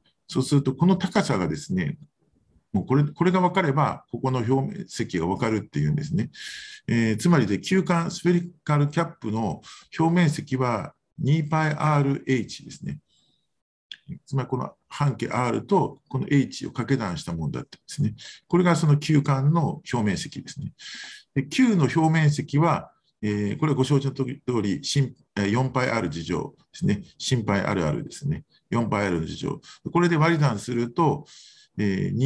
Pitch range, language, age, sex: 120-165 Hz, Japanese, 50-69, male